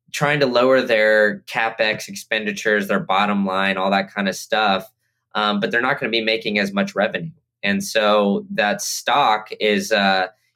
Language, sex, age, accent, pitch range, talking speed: English, male, 20-39, American, 95-115 Hz, 180 wpm